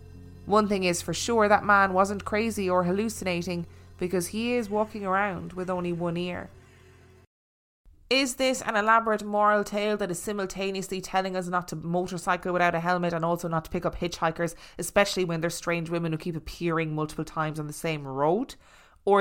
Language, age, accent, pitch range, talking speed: English, 20-39, Irish, 145-190 Hz, 185 wpm